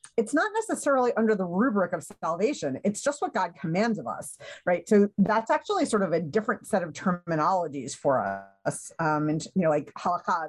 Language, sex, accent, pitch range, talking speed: English, female, American, 160-205 Hz, 195 wpm